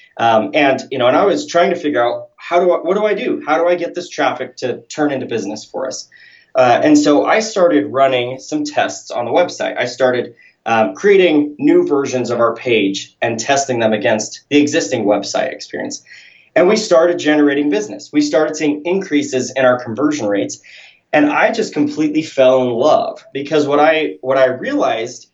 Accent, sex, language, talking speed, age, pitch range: American, male, English, 200 wpm, 20-39, 125-185 Hz